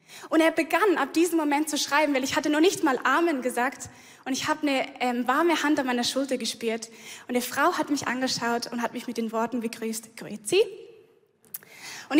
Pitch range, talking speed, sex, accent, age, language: 265-330 Hz, 205 wpm, female, German, 10-29, German